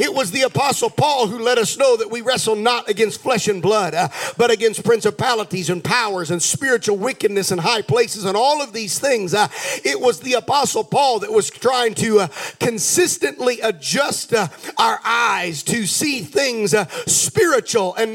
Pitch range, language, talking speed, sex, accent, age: 180-250 Hz, English, 185 wpm, male, American, 50-69